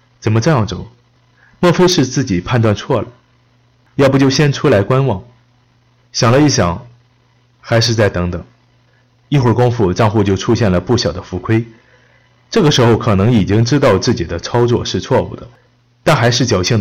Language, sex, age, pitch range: Chinese, male, 30-49, 95-125 Hz